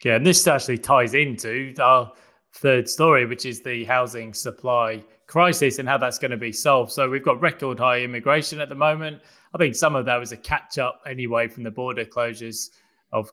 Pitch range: 120-140 Hz